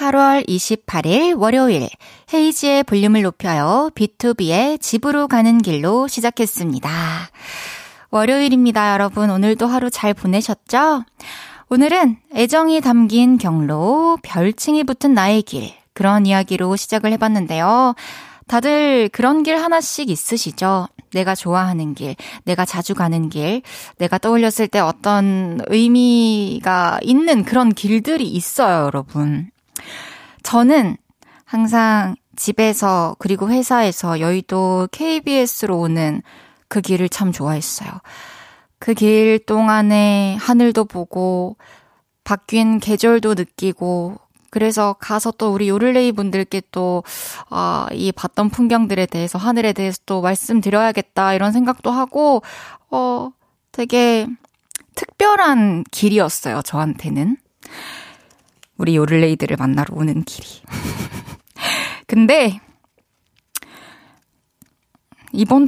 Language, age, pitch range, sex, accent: Korean, 20-39, 185-240 Hz, female, native